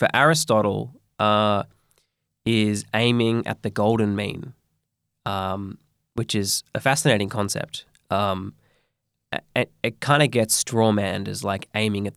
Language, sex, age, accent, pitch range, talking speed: English, male, 20-39, Australian, 105-130 Hz, 135 wpm